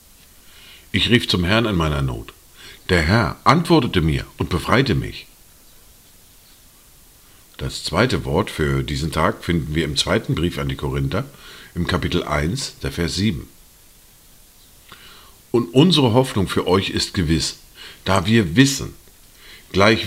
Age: 50-69